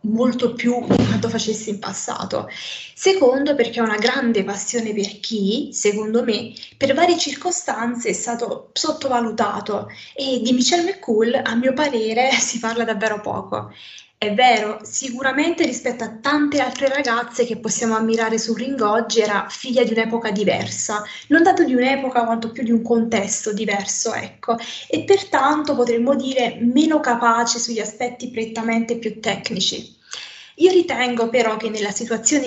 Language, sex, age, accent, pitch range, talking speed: Italian, female, 20-39, native, 220-265 Hz, 150 wpm